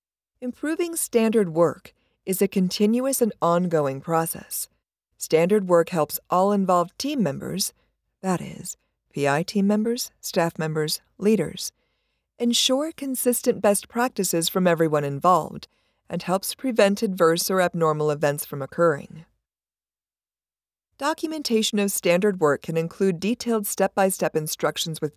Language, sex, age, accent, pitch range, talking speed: English, female, 50-69, American, 165-235 Hz, 120 wpm